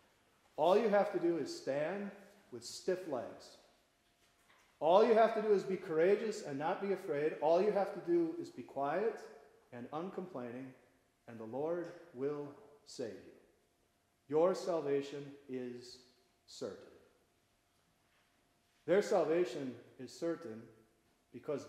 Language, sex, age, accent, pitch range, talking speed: English, male, 40-59, American, 140-200 Hz, 130 wpm